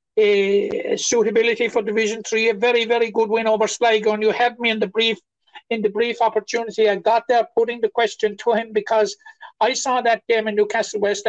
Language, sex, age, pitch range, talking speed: English, male, 60-79, 210-245 Hz, 205 wpm